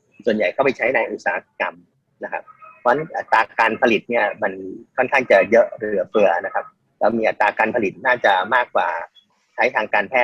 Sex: male